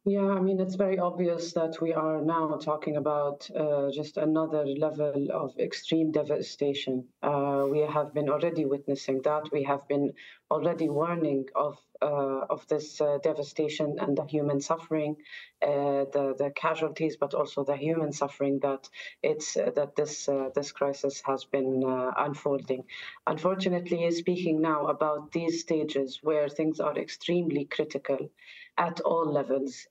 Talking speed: 150 wpm